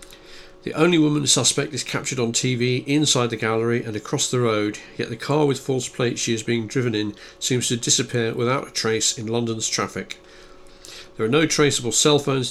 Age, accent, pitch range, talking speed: 50-69, British, 110-130 Hz, 195 wpm